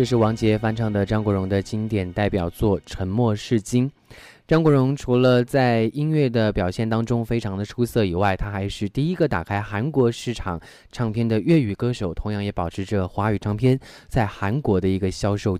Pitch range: 100-130 Hz